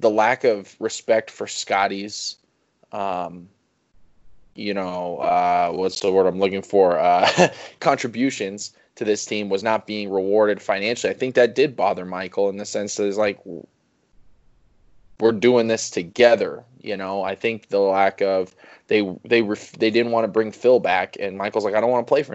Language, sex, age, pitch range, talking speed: English, male, 20-39, 95-115 Hz, 185 wpm